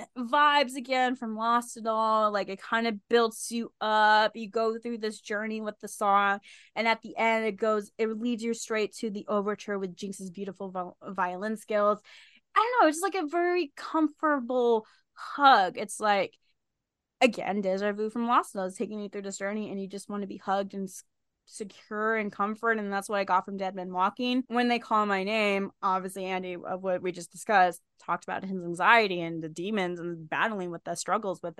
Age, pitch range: 20-39, 185-225 Hz